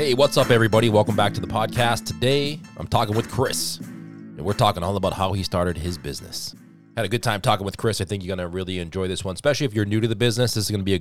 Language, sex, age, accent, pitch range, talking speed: English, male, 30-49, American, 95-115 Hz, 290 wpm